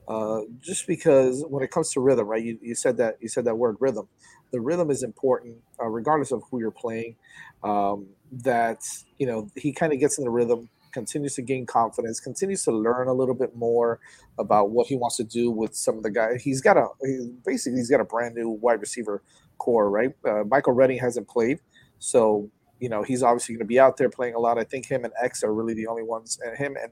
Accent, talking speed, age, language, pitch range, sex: American, 235 wpm, 40-59, English, 110-135 Hz, male